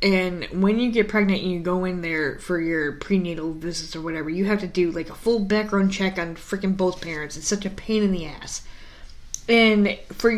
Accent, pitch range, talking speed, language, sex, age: American, 185-260 Hz, 220 wpm, English, female, 20-39